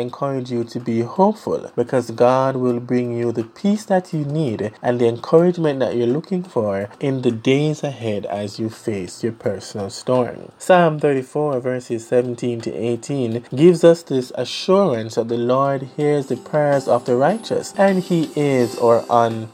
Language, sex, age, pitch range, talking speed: English, male, 20-39, 110-135 Hz, 170 wpm